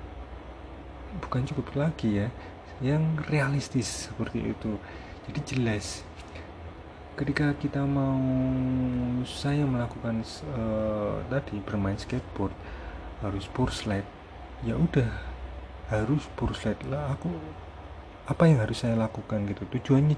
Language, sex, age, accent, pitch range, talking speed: Indonesian, male, 30-49, native, 95-125 Hz, 100 wpm